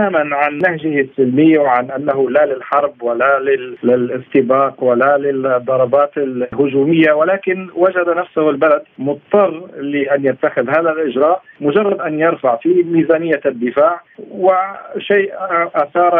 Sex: male